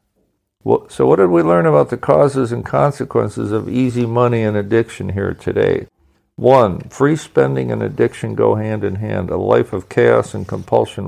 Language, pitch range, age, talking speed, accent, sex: English, 100-125 Hz, 50-69, 175 wpm, American, male